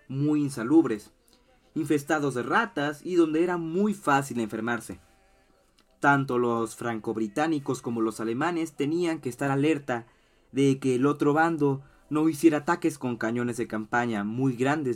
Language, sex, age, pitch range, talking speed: Spanish, male, 30-49, 120-155 Hz, 140 wpm